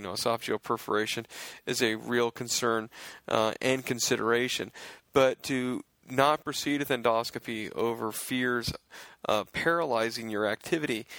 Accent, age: American, 40-59